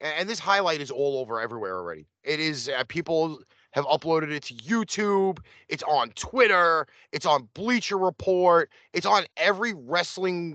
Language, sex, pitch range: English, male, 135-175 Hz